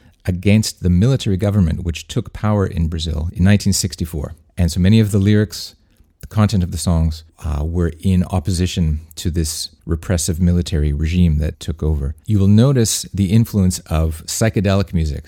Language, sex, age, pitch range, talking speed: English, male, 40-59, 80-100 Hz, 165 wpm